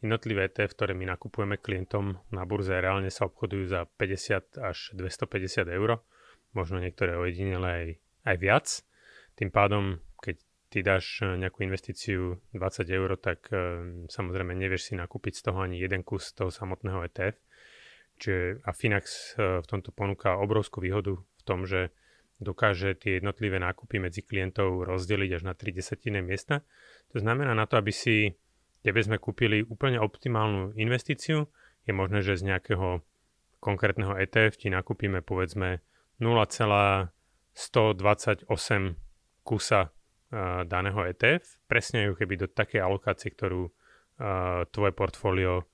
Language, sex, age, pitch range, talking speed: Slovak, male, 30-49, 95-110 Hz, 135 wpm